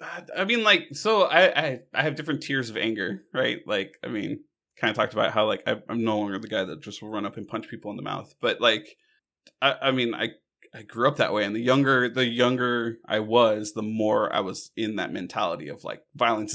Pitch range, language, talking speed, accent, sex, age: 110-135 Hz, English, 245 wpm, American, male, 20-39